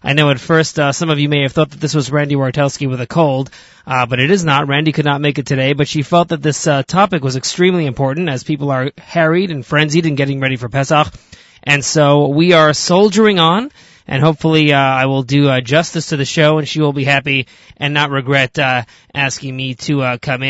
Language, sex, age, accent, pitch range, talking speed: English, male, 30-49, American, 135-160 Hz, 240 wpm